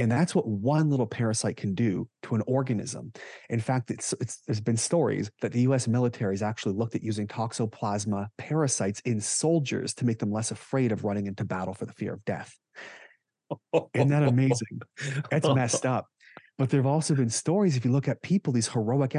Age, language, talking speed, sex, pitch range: 30-49, English, 195 wpm, male, 110-135 Hz